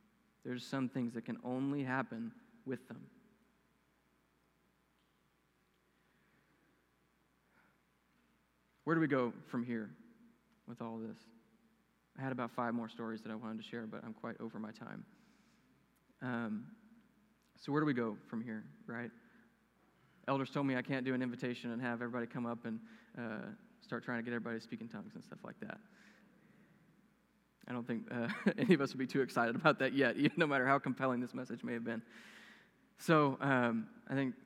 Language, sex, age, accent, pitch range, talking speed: English, male, 20-39, American, 120-165 Hz, 175 wpm